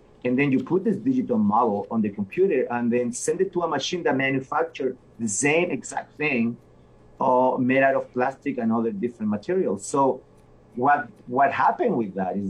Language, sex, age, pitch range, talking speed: English, male, 30-49, 120-160 Hz, 180 wpm